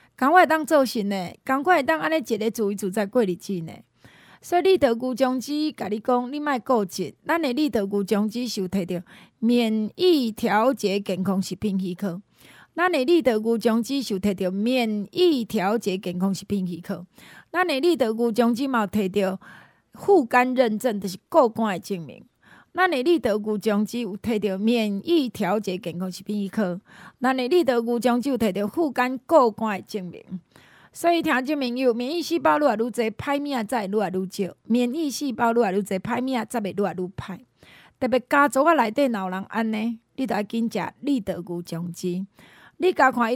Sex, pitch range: female, 200-265 Hz